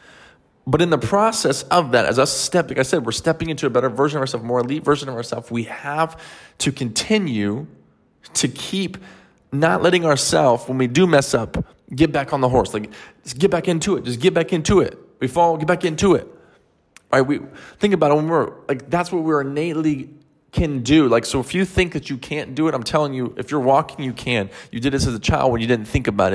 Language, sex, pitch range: English, male, 125-165 Hz